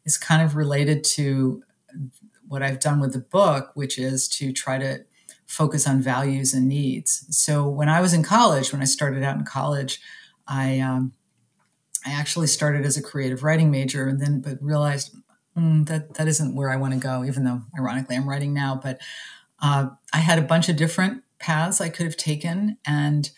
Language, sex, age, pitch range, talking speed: English, female, 50-69, 135-160 Hz, 195 wpm